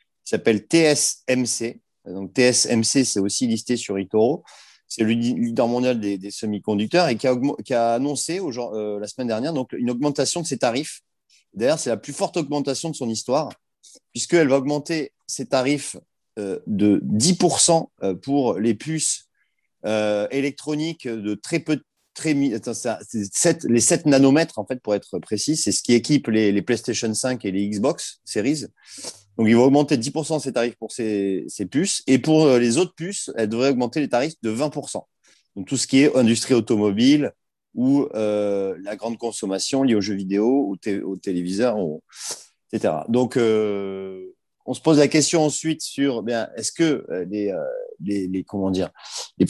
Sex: male